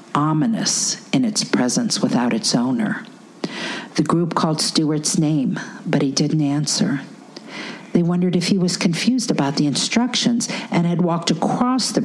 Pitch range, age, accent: 155-230 Hz, 50-69, American